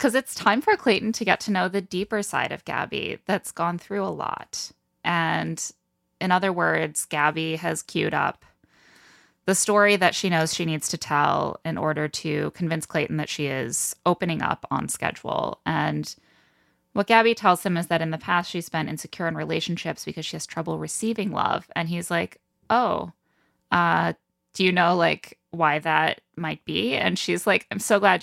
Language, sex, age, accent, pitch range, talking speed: English, female, 20-39, American, 155-180 Hz, 185 wpm